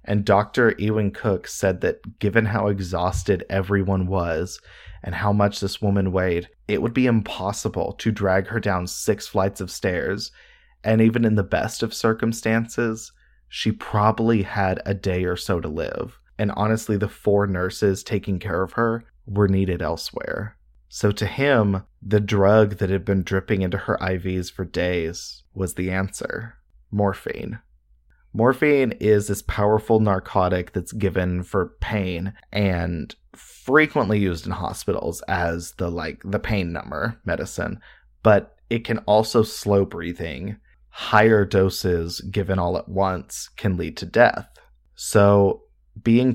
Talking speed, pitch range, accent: 150 wpm, 95-110 Hz, American